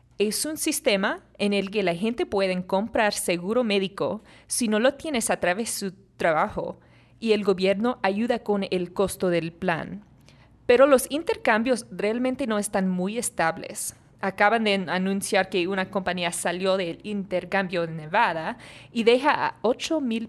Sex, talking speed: female, 155 wpm